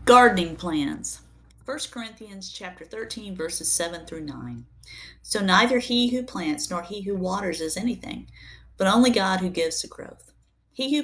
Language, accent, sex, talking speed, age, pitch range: English, American, female, 165 wpm, 50-69, 165-235 Hz